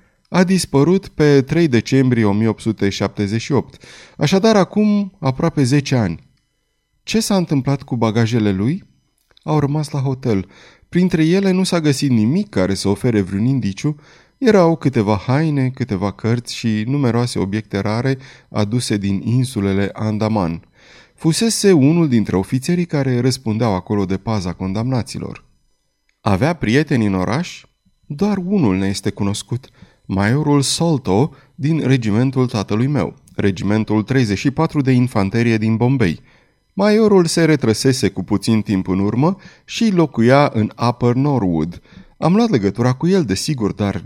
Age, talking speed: 30-49, 130 wpm